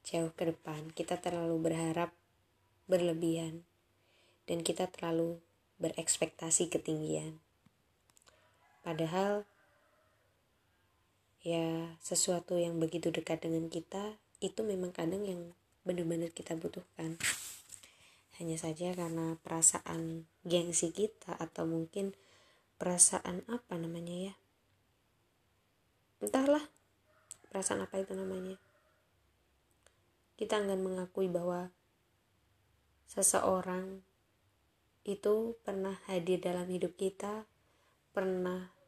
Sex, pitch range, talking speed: female, 115-185 Hz, 85 wpm